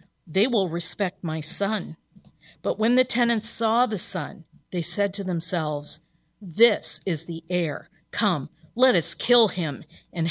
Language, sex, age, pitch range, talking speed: English, female, 50-69, 170-235 Hz, 150 wpm